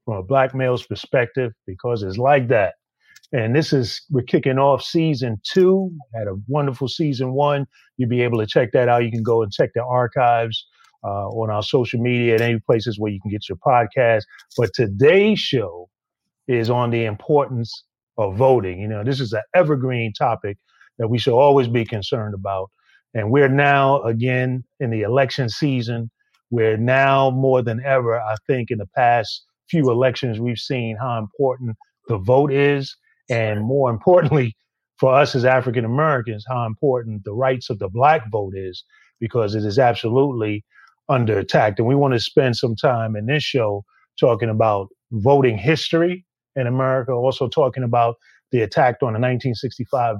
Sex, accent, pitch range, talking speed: male, American, 115-140 Hz, 175 wpm